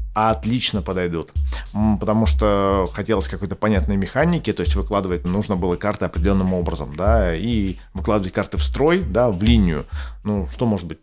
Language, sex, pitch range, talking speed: Russian, male, 80-105 Hz, 160 wpm